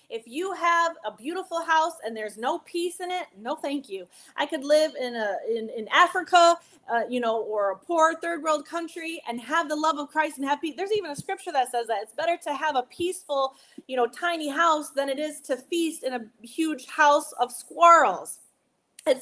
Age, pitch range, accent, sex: 30-49, 235-315 Hz, American, female